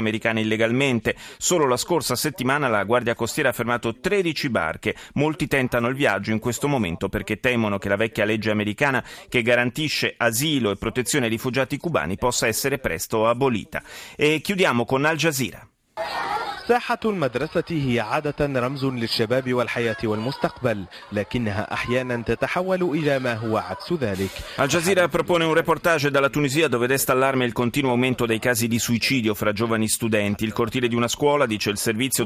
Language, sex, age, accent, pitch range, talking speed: Italian, male, 30-49, native, 115-140 Hz, 130 wpm